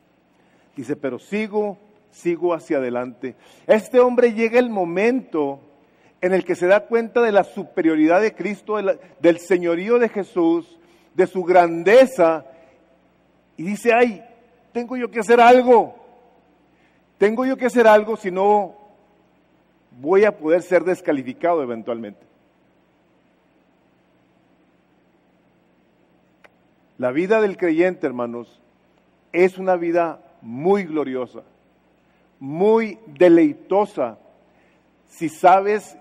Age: 40-59